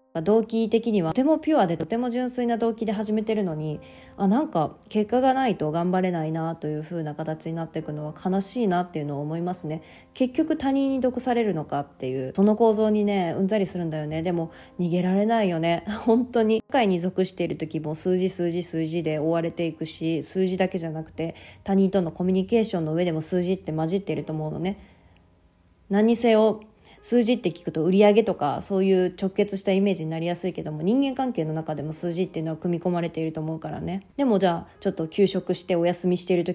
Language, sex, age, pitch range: Japanese, female, 20-39, 160-210 Hz